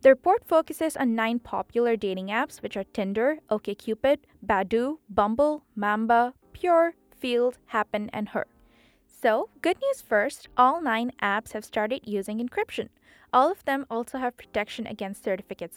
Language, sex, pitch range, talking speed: English, female, 215-285 Hz, 150 wpm